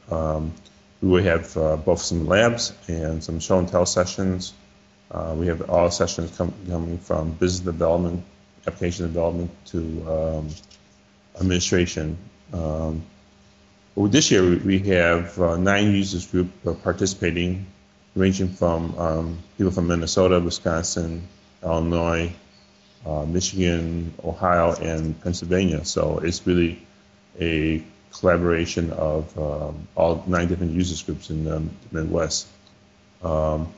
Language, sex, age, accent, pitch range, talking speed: English, male, 30-49, American, 80-95 Hz, 115 wpm